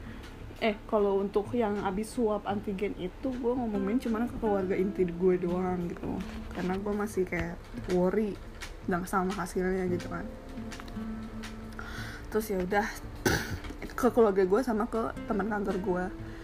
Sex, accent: female, native